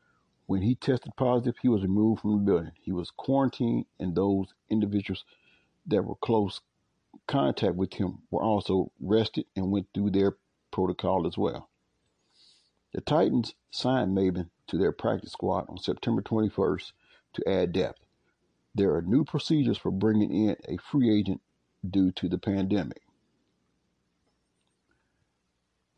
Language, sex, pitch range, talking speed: English, male, 90-110 Hz, 140 wpm